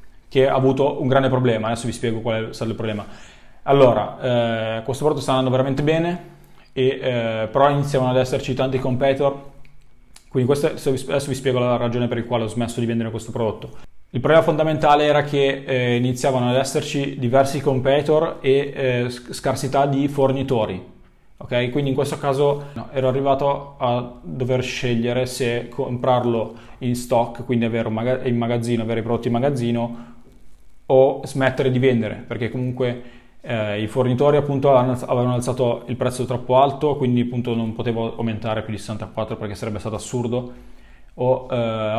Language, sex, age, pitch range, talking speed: Italian, male, 20-39, 120-135 Hz, 165 wpm